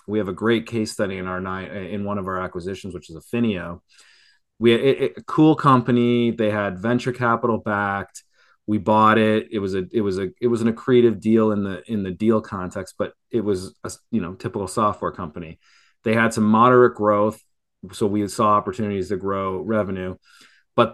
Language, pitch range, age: English, 95-115 Hz, 30-49